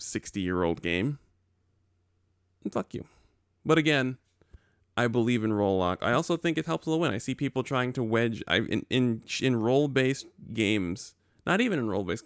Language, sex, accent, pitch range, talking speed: English, male, American, 90-120 Hz, 185 wpm